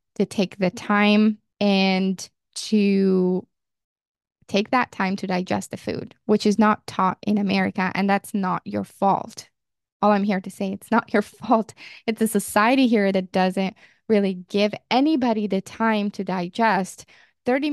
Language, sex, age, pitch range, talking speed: English, female, 20-39, 195-230 Hz, 160 wpm